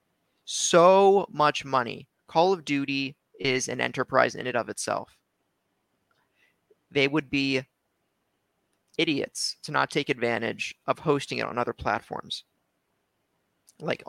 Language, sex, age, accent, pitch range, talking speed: English, male, 30-49, American, 130-160 Hz, 120 wpm